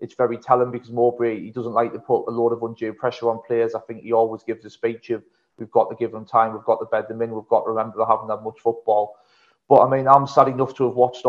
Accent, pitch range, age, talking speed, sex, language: British, 115-125 Hz, 30-49, 290 wpm, male, English